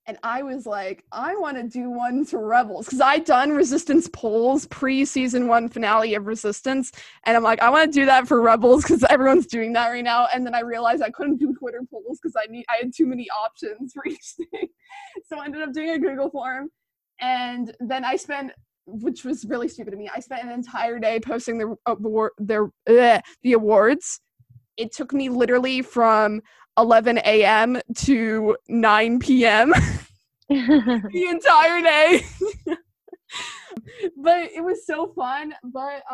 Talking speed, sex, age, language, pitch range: 175 wpm, female, 20-39, English, 230-300 Hz